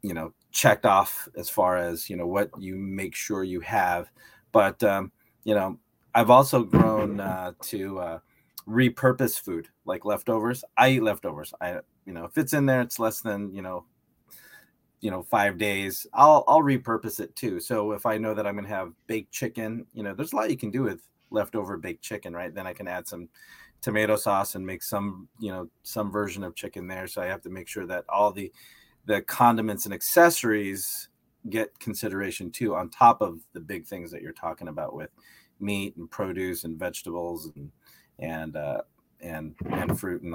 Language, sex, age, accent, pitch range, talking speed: English, male, 30-49, American, 95-115 Hz, 195 wpm